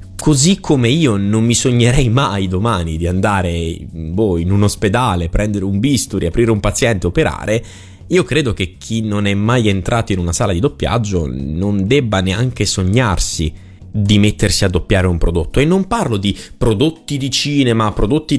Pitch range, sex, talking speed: 95-145 Hz, male, 175 wpm